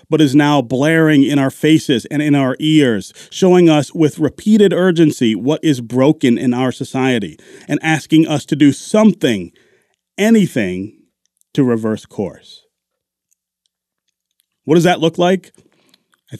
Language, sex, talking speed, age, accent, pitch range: English, male, 140 wpm, 40-59, American, 115-155 Hz